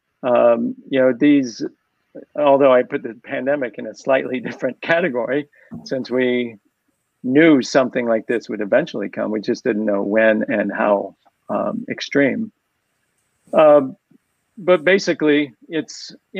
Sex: male